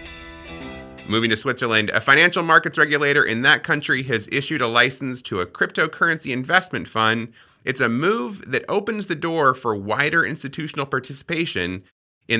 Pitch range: 105-155 Hz